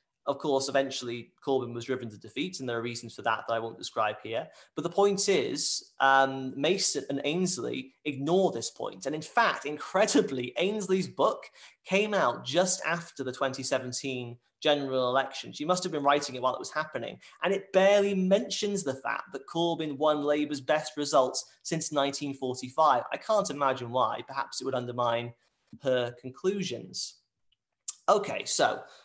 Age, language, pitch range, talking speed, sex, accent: 30-49, English, 130-160 Hz, 165 wpm, male, British